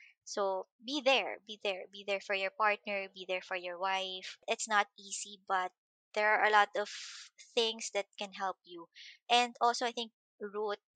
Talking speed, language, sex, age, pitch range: 185 wpm, English, male, 20-39, 195-265 Hz